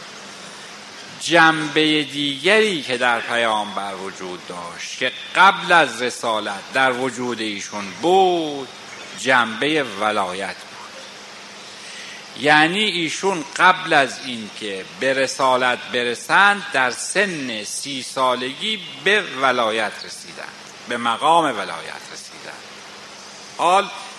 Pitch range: 120-170 Hz